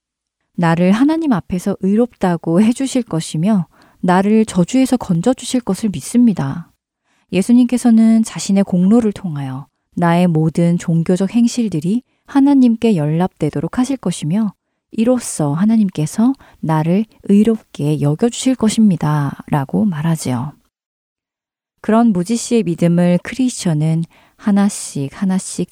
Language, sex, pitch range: Korean, female, 160-235 Hz